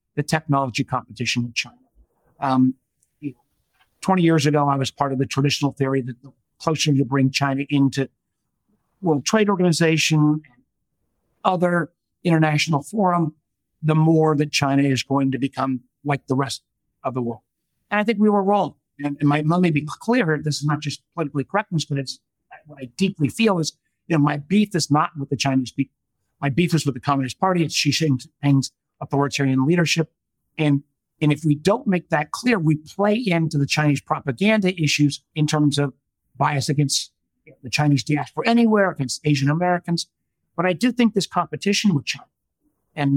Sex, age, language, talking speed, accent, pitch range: male, 50-69, English, 175 wpm, American, 135-165 Hz